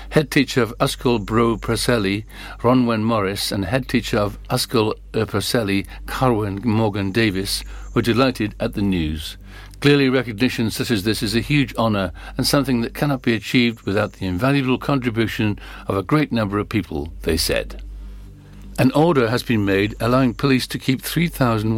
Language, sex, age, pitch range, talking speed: English, male, 60-79, 100-125 Hz, 160 wpm